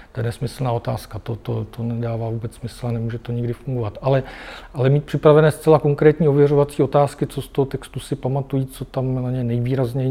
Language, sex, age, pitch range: Czech, male, 40-59, 115-130 Hz